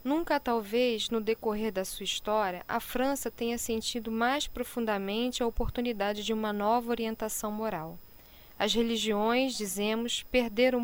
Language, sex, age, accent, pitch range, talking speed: Portuguese, female, 10-29, Brazilian, 210-245 Hz, 135 wpm